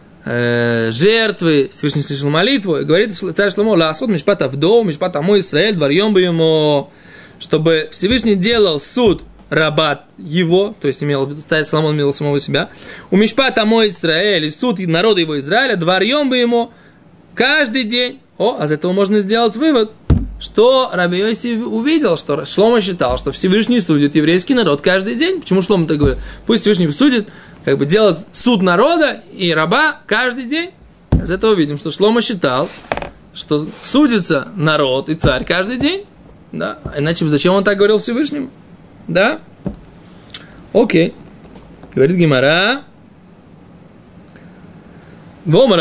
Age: 20-39